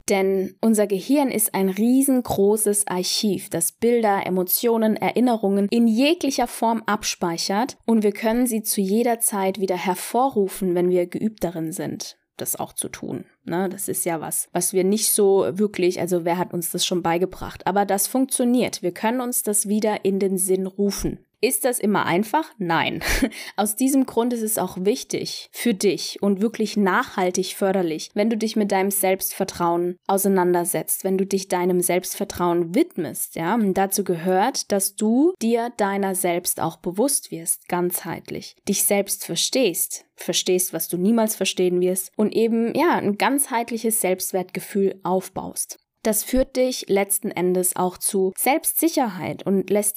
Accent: German